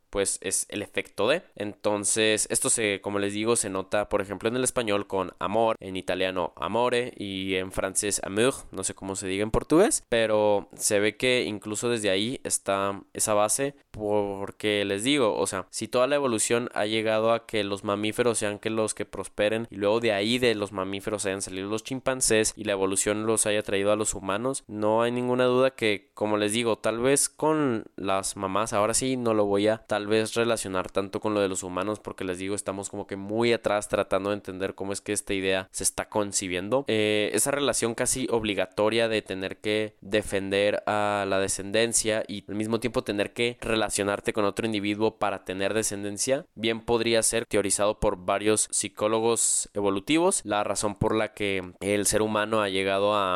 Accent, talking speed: Mexican, 195 wpm